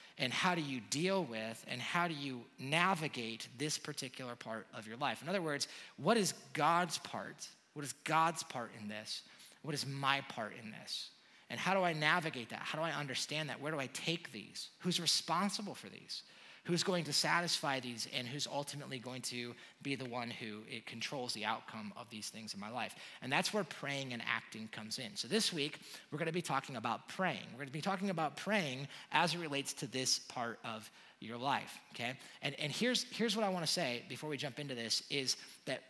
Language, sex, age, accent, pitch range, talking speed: English, male, 30-49, American, 130-180 Hz, 215 wpm